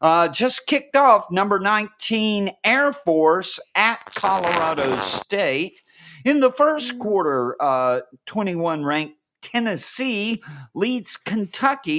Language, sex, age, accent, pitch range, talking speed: English, male, 50-69, American, 150-225 Hz, 105 wpm